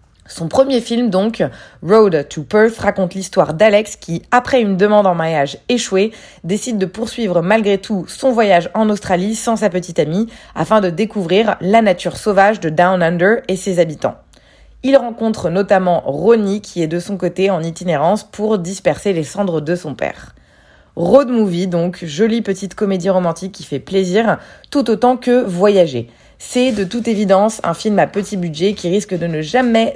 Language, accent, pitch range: French, French, 175-215 Hz